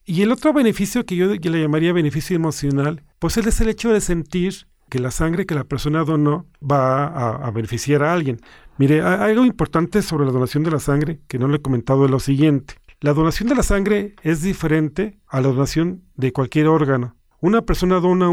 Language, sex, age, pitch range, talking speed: Spanish, male, 40-59, 135-175 Hz, 205 wpm